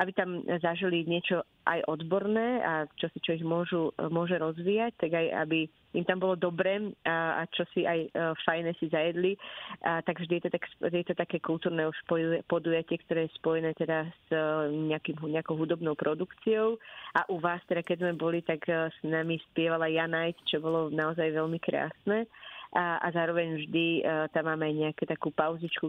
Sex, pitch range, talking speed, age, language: female, 160-180 Hz, 160 wpm, 30-49, Slovak